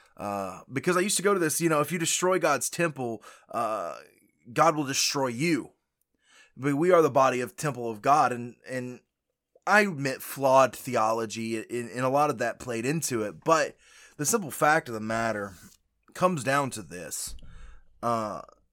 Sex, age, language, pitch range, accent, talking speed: male, 20-39, English, 110-140 Hz, American, 180 wpm